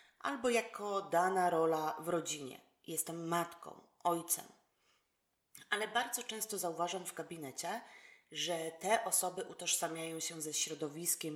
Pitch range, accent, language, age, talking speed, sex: 160-200 Hz, native, Polish, 30-49, 115 wpm, female